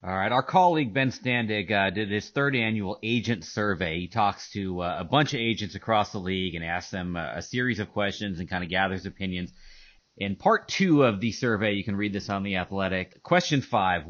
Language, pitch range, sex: English, 95-130 Hz, male